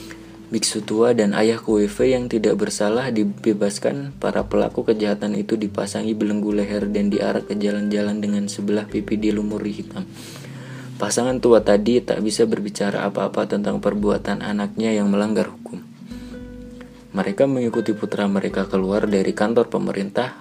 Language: Indonesian